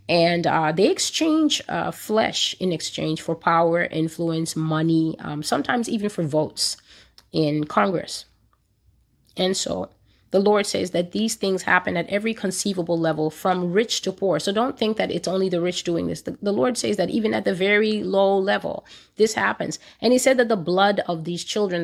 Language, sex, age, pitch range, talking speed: English, female, 30-49, 165-215 Hz, 185 wpm